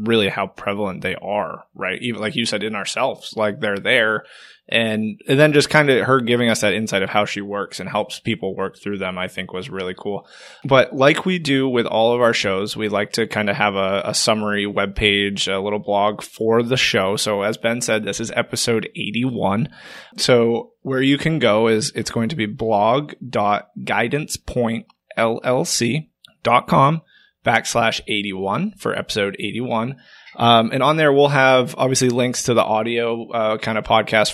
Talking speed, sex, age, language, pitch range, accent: 185 wpm, male, 20-39, English, 105-125 Hz, American